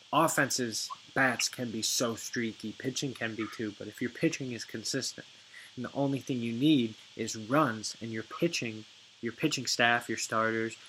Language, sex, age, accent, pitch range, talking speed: English, male, 20-39, American, 110-130 Hz, 175 wpm